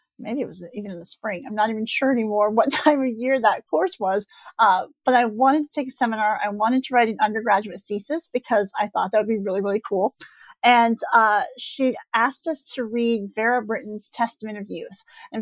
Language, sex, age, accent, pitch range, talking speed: English, female, 40-59, American, 215-260 Hz, 220 wpm